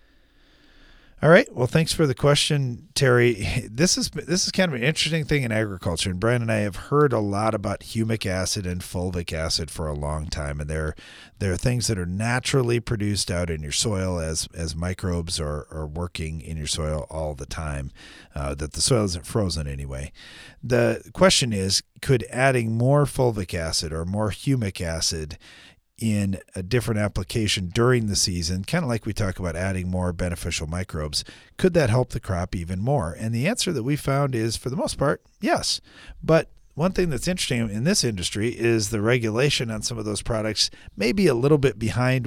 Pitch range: 90-125 Hz